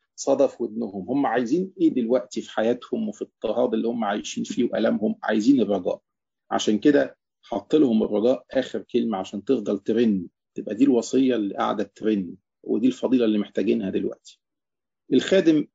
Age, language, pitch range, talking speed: 40-59, English, 105-130 Hz, 150 wpm